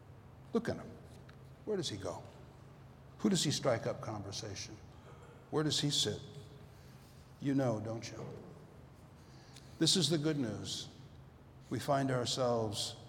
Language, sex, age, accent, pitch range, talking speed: English, male, 60-79, American, 120-145 Hz, 135 wpm